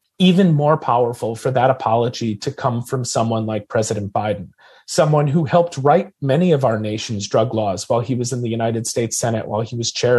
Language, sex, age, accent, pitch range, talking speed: English, male, 30-49, American, 120-170 Hz, 205 wpm